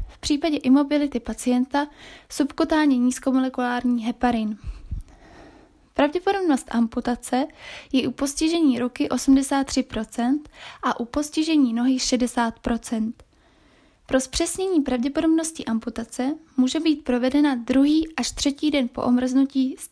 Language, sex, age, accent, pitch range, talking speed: Czech, female, 20-39, native, 245-300 Hz, 100 wpm